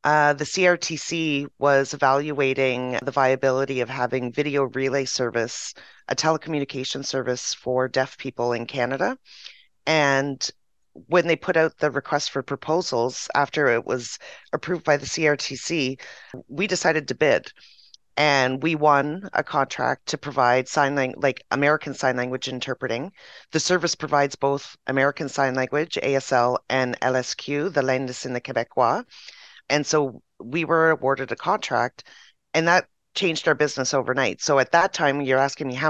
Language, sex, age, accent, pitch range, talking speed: English, female, 30-49, American, 130-155 Hz, 150 wpm